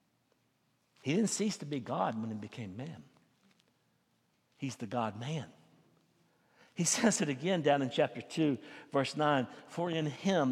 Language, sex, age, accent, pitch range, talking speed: English, male, 60-79, American, 150-235 Hz, 150 wpm